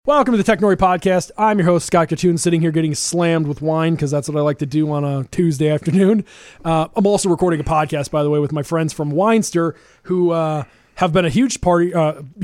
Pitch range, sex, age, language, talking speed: 150-175 Hz, male, 20-39, English, 235 wpm